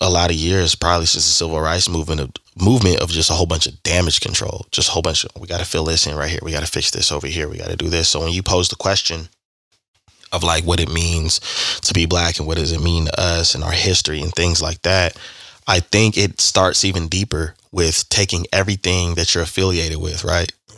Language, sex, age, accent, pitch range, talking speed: English, male, 20-39, American, 80-95 Hz, 250 wpm